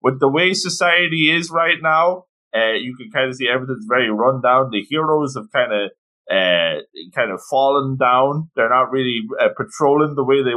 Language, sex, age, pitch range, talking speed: English, male, 20-39, 110-145 Hz, 200 wpm